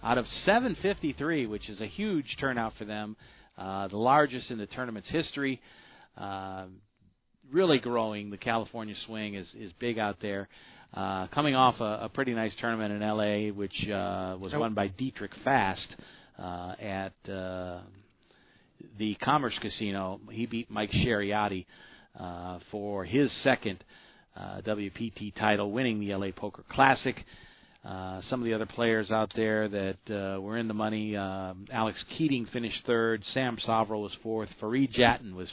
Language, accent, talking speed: English, American, 155 wpm